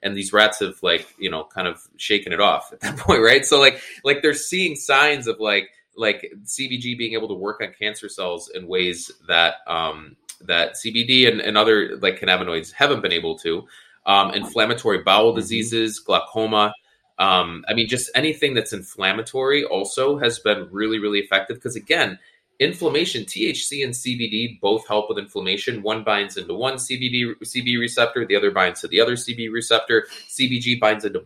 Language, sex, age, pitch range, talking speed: English, male, 20-39, 105-145 Hz, 180 wpm